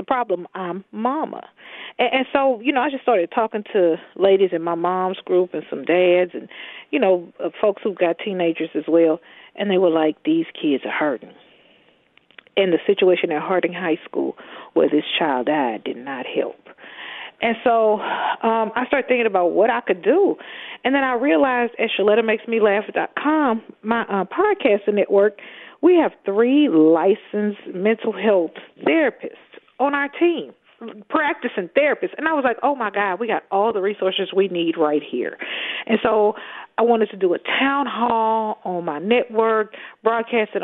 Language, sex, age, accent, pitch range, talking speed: English, female, 40-59, American, 190-255 Hz, 175 wpm